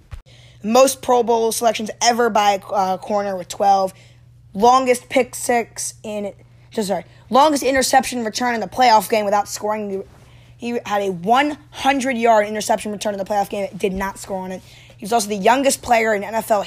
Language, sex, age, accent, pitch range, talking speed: English, female, 10-29, American, 165-220 Hz, 175 wpm